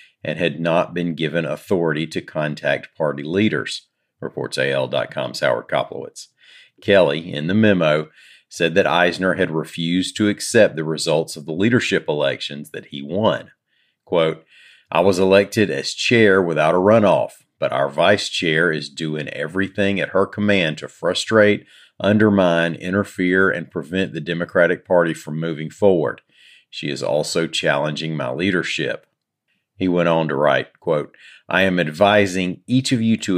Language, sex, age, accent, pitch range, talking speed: English, male, 40-59, American, 80-100 Hz, 150 wpm